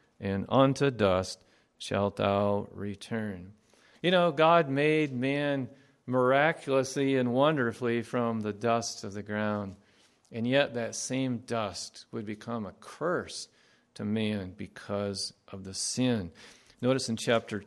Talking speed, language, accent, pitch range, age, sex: 130 wpm, English, American, 105-140 Hz, 50-69, male